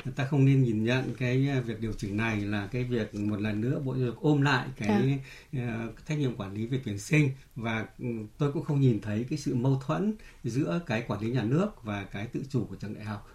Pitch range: 115-145 Hz